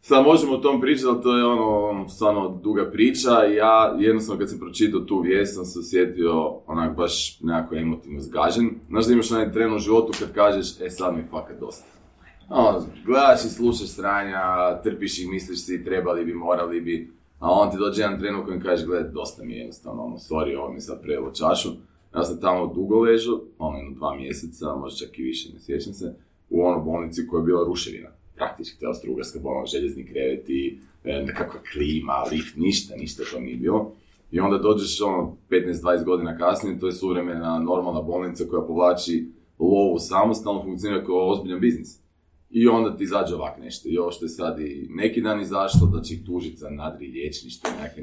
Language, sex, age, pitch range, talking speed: Croatian, male, 30-49, 85-105 Hz, 190 wpm